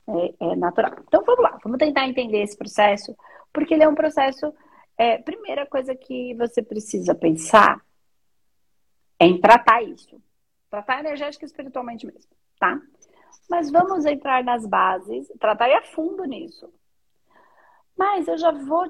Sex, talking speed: female, 145 wpm